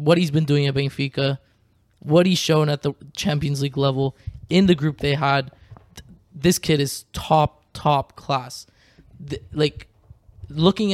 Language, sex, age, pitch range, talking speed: English, male, 20-39, 130-150 Hz, 150 wpm